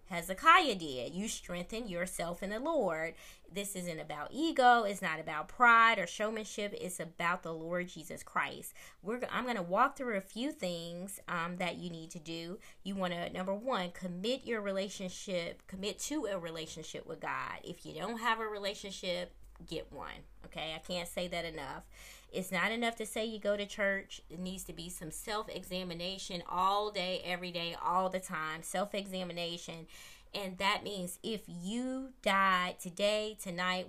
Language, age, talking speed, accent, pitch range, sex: English, 20-39, 170 wpm, American, 175-210 Hz, female